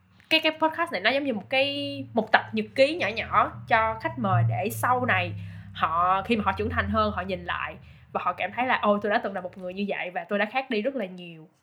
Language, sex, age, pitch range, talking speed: Vietnamese, female, 10-29, 185-245 Hz, 275 wpm